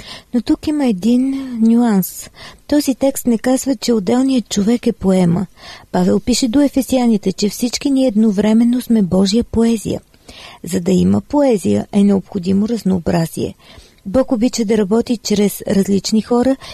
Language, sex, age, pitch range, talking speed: Bulgarian, female, 40-59, 200-245 Hz, 140 wpm